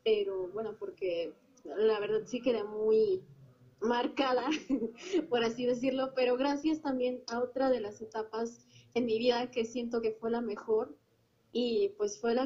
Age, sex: 20-39, female